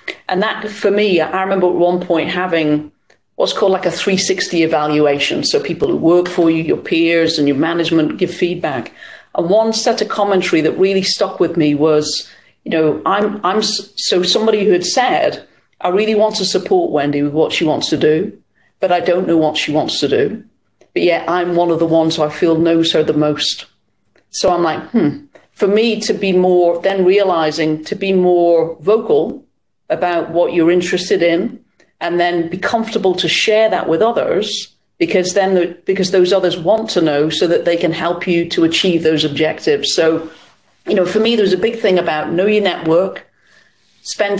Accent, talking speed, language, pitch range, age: British, 195 wpm, English, 165-200 Hz, 40-59